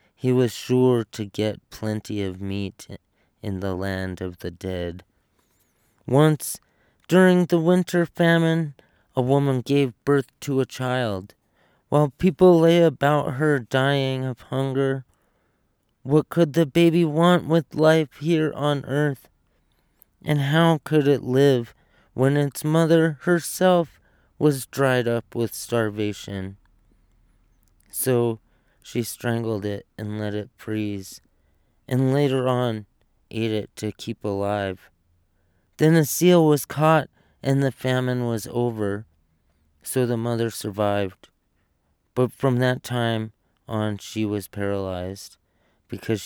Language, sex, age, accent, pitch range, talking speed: English, male, 30-49, American, 100-150 Hz, 125 wpm